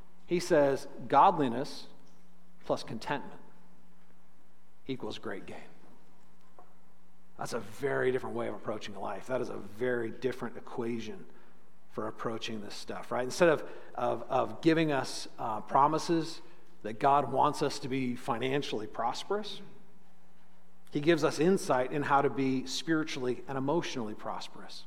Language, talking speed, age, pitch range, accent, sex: English, 135 wpm, 50-69, 130-170 Hz, American, male